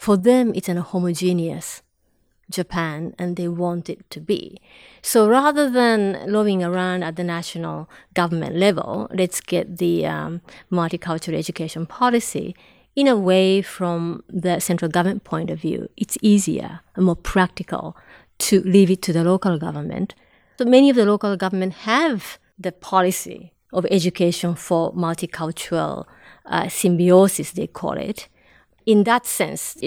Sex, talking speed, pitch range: female, 145 wpm, 170-205 Hz